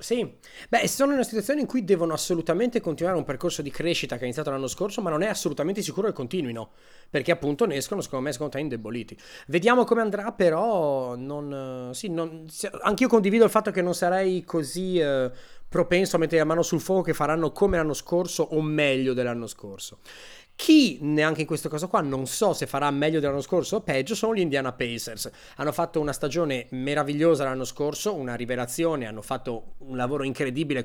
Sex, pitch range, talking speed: male, 135-185 Hz, 195 wpm